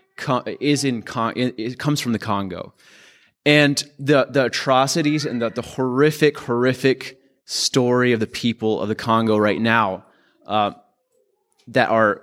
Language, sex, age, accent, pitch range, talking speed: English, male, 20-39, American, 110-135 Hz, 140 wpm